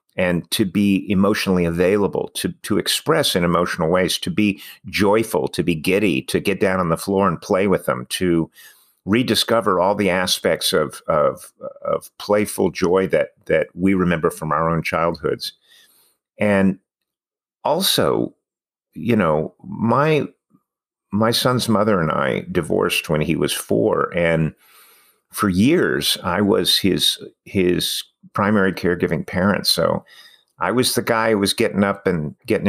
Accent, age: American, 50-69